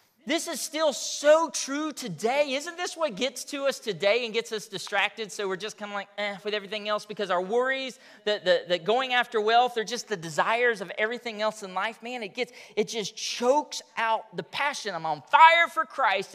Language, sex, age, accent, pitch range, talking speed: English, male, 40-59, American, 140-220 Hz, 210 wpm